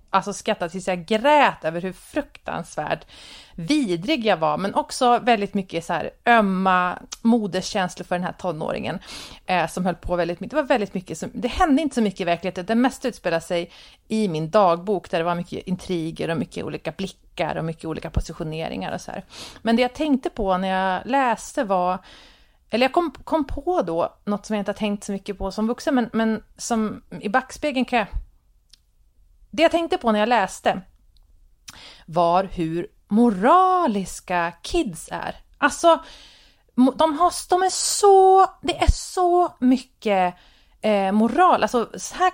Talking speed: 170 wpm